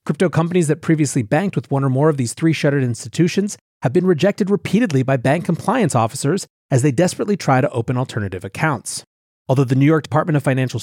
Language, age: English, 30-49